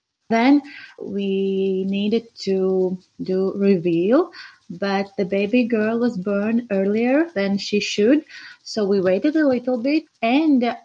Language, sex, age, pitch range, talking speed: English, female, 20-39, 195-245 Hz, 125 wpm